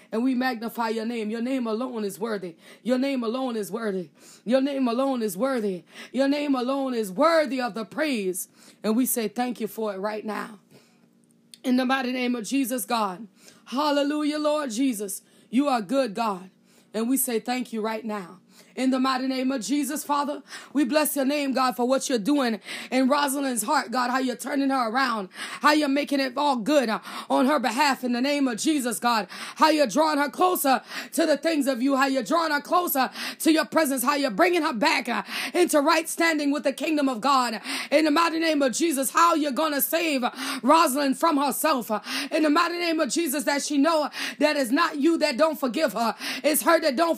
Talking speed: 210 wpm